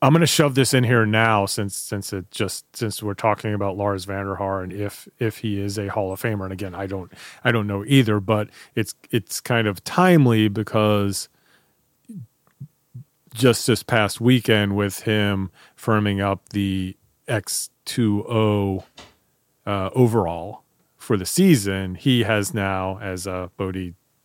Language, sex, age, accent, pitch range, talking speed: English, male, 30-49, American, 100-125 Hz, 155 wpm